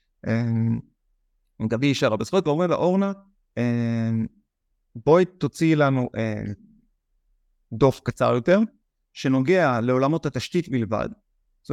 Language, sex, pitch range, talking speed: Hebrew, male, 120-155 Hz, 100 wpm